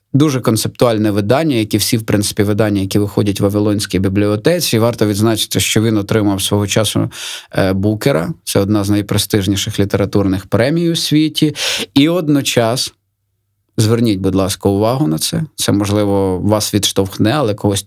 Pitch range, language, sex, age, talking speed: 100-120 Hz, Ukrainian, male, 20-39, 145 wpm